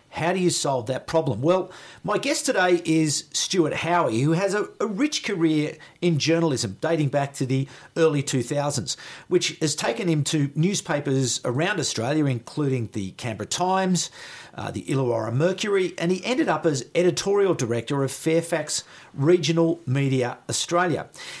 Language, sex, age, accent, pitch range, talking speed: English, male, 50-69, Australian, 135-180 Hz, 155 wpm